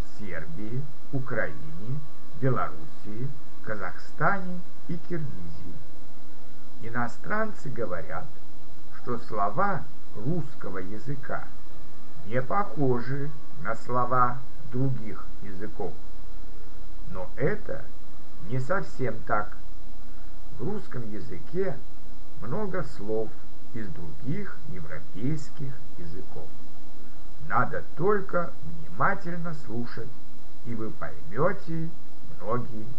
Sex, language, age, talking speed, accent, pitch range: male, Russian, 60-79, 75 wpm, native, 110-145 Hz